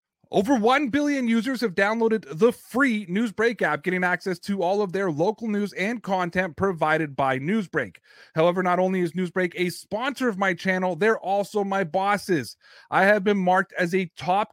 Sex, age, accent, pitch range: male, 30-49, American, 175-210 Hz